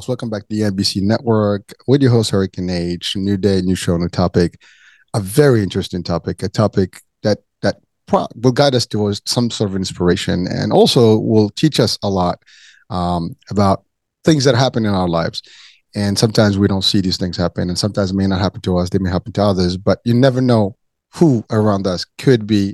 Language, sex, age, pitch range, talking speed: English, male, 30-49, 100-135 Hz, 205 wpm